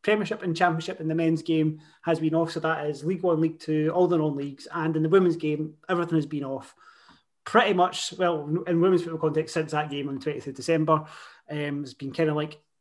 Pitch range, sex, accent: 155-190 Hz, male, British